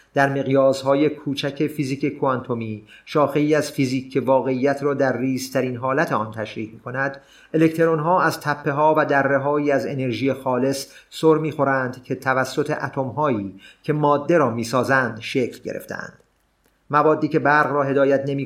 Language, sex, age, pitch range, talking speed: Persian, male, 30-49, 125-155 Hz, 145 wpm